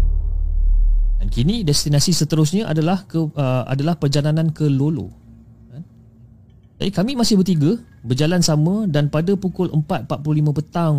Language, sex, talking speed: Malay, male, 120 wpm